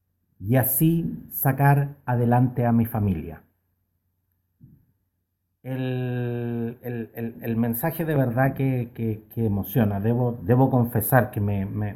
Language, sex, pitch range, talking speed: Spanish, male, 95-135 Hz, 120 wpm